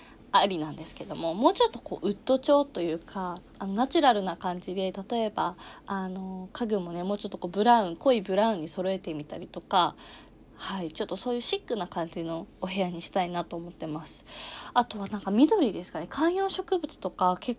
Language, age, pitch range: Japanese, 20-39, 180-235 Hz